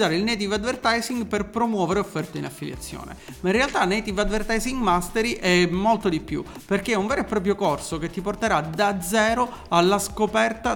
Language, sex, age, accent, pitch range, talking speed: Italian, male, 40-59, native, 180-230 Hz, 180 wpm